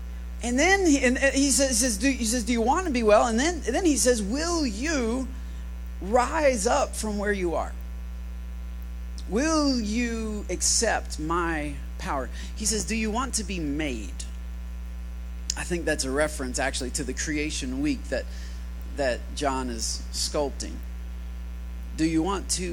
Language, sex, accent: English, male, American